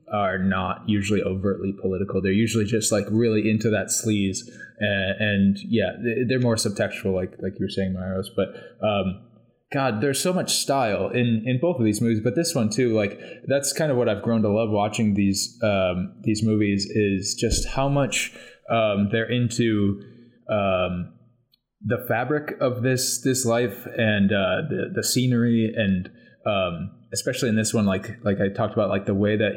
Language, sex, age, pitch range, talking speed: English, male, 20-39, 100-120 Hz, 185 wpm